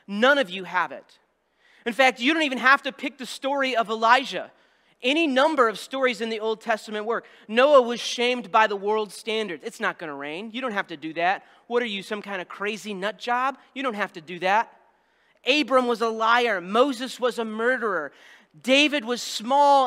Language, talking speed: English, 210 wpm